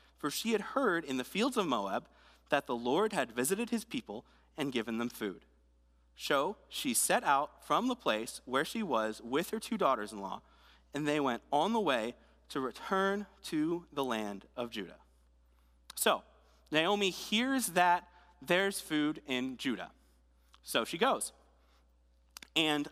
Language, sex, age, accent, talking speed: English, male, 30-49, American, 155 wpm